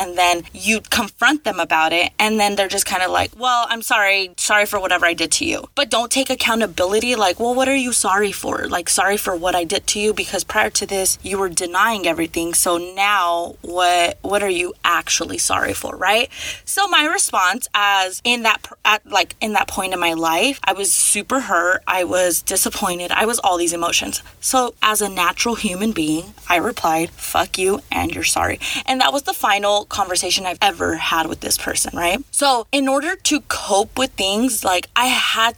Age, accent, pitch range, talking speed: 20-39, American, 180-235 Hz, 205 wpm